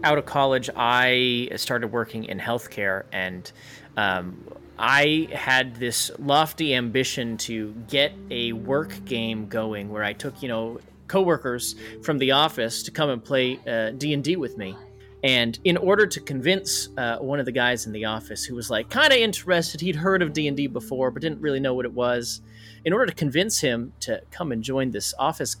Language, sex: English, male